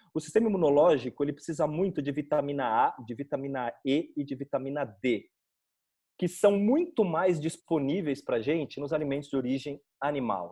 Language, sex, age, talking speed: Portuguese, male, 30-49, 165 wpm